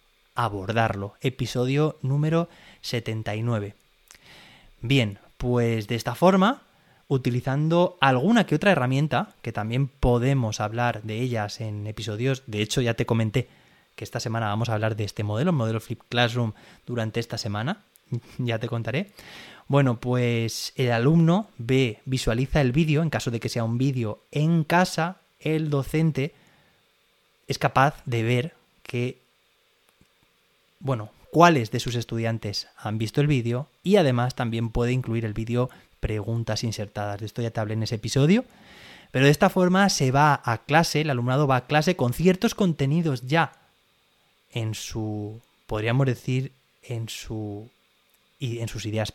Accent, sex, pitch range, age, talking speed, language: Spanish, male, 115-140 Hz, 20-39, 150 wpm, Spanish